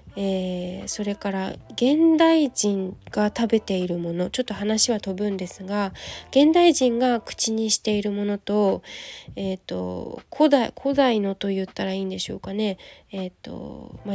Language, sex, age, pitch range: Japanese, female, 20-39, 190-240 Hz